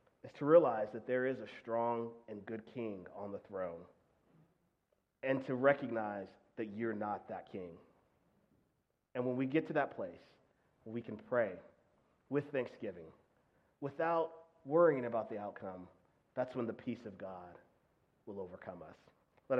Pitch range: 100-130 Hz